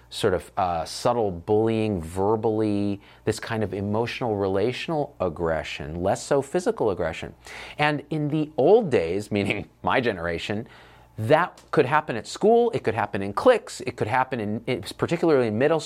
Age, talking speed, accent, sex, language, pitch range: 40-59, 160 wpm, American, male, English, 95-120 Hz